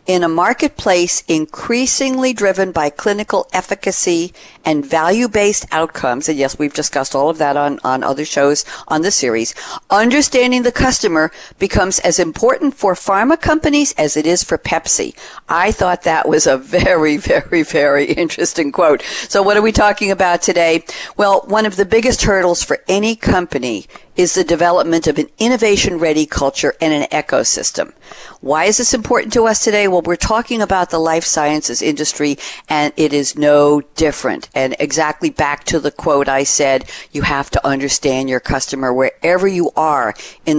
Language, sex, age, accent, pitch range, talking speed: English, female, 60-79, American, 150-200 Hz, 165 wpm